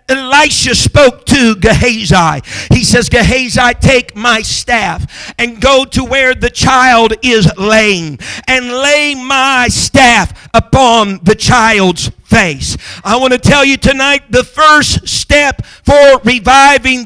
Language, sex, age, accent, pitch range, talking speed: English, male, 50-69, American, 235-280 Hz, 130 wpm